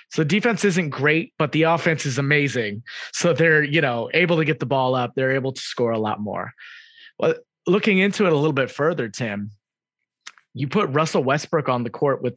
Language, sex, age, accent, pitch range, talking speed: English, male, 30-49, American, 125-160 Hz, 210 wpm